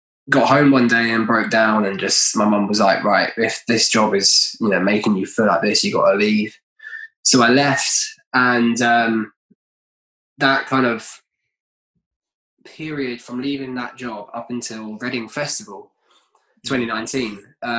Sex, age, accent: male, 20-39, British